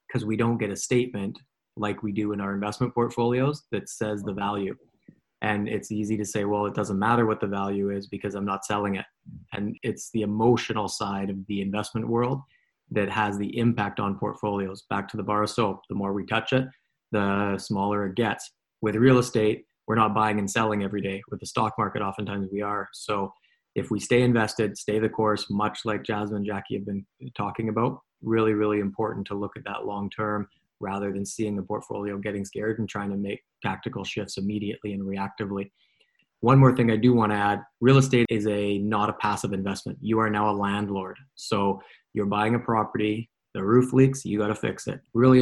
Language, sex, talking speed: English, male, 210 wpm